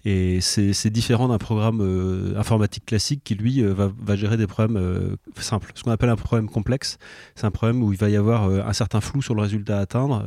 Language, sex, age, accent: French, male, 30-49, French